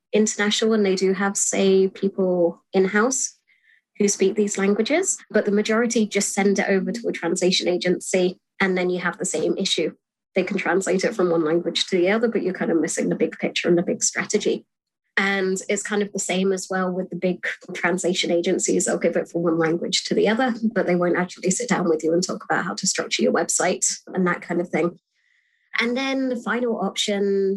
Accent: British